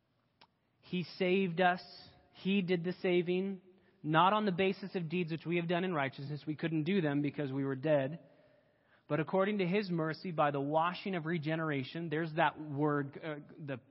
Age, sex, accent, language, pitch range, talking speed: 30-49, male, American, English, 130-180 Hz, 180 wpm